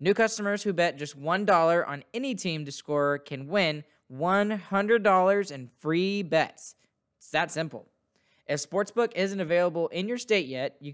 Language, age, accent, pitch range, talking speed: English, 10-29, American, 145-185 Hz, 160 wpm